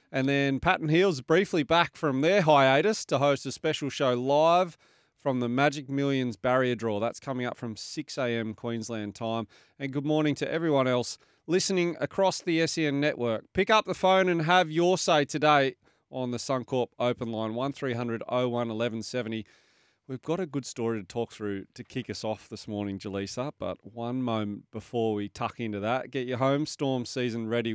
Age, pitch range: 30-49, 115-150 Hz